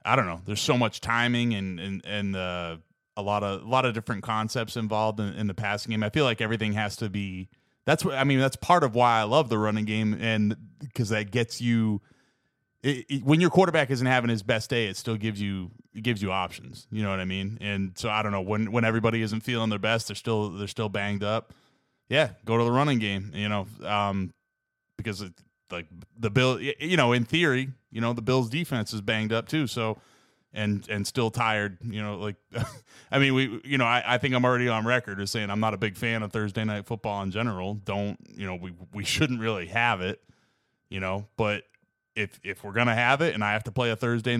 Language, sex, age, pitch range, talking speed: English, male, 20-39, 100-120 Hz, 240 wpm